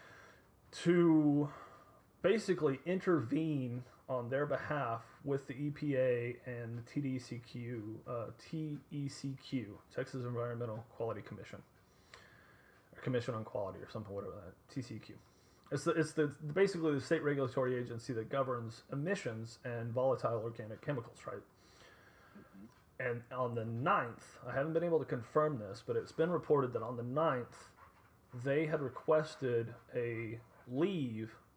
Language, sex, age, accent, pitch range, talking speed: English, male, 30-49, American, 120-150 Hz, 130 wpm